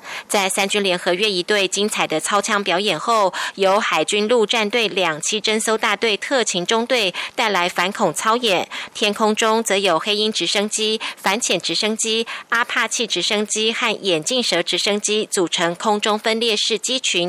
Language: German